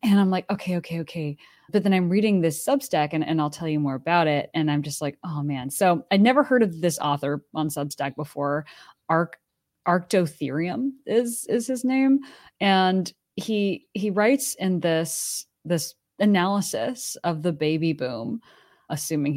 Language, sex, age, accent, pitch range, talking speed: English, female, 20-39, American, 150-190 Hz, 165 wpm